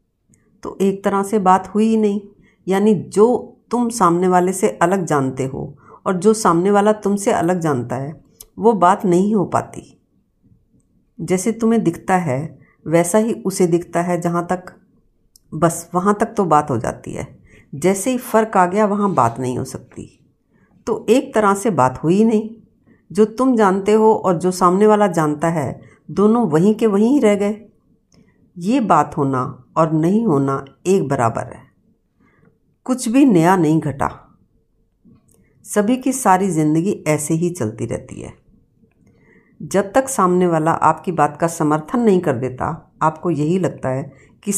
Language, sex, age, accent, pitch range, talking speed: Hindi, female, 50-69, native, 150-205 Hz, 165 wpm